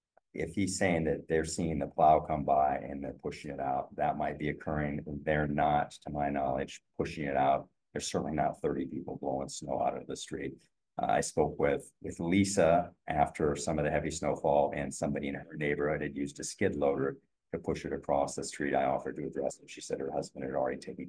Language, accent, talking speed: English, American, 220 wpm